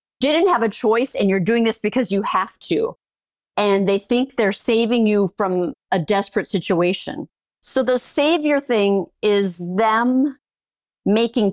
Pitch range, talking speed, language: 180-210 Hz, 150 wpm, English